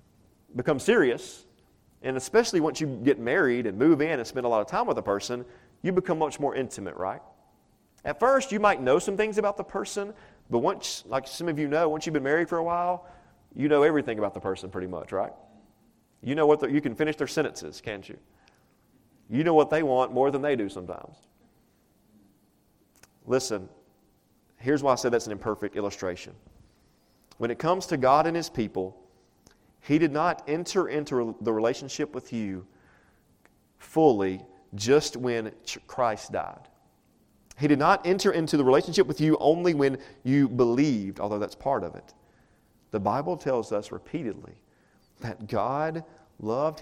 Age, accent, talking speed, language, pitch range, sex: 40-59, American, 175 wpm, English, 110-155 Hz, male